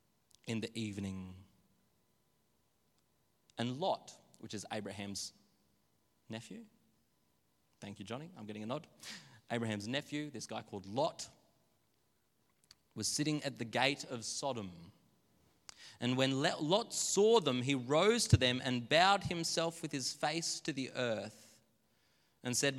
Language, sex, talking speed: English, male, 130 wpm